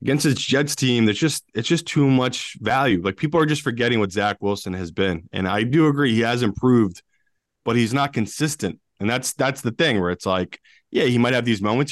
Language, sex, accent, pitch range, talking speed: English, male, American, 95-130 Hz, 230 wpm